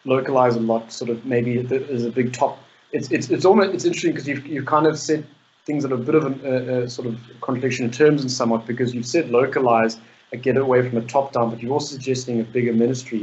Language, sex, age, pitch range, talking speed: English, male, 20-39, 115-125 Hz, 255 wpm